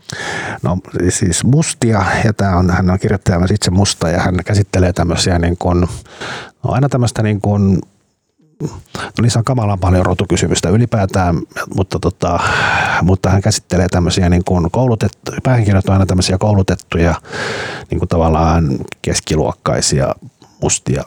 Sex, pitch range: male, 85-105 Hz